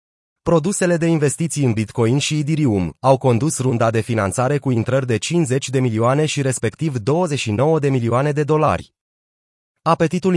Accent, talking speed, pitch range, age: native, 150 wpm, 115-150 Hz, 30-49